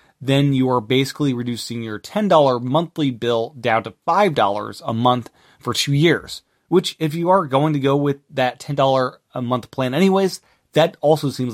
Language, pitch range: English, 120-155 Hz